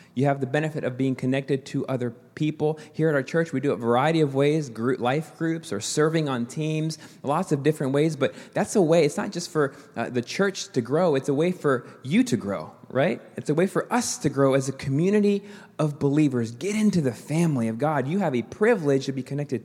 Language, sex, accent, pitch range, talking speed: English, male, American, 140-200 Hz, 230 wpm